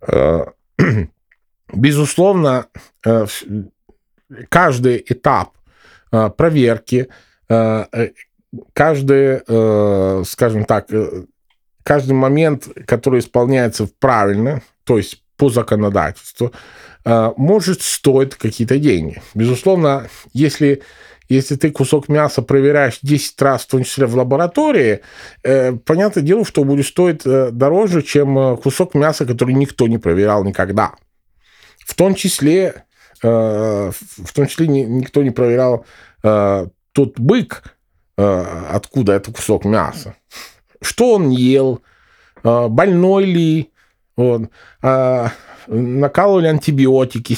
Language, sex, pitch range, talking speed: Ukrainian, male, 115-145 Hz, 90 wpm